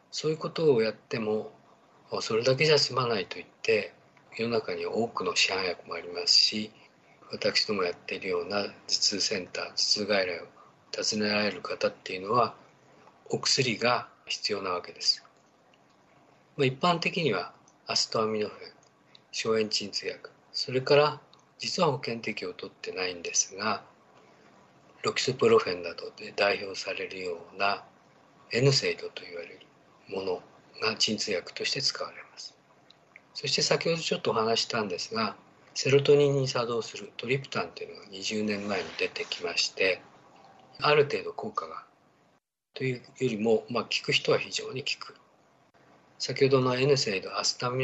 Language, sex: Japanese, male